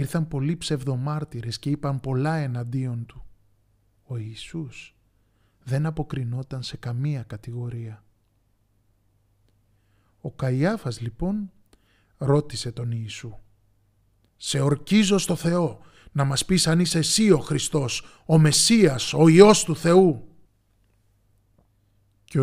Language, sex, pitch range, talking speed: Greek, male, 105-155 Hz, 105 wpm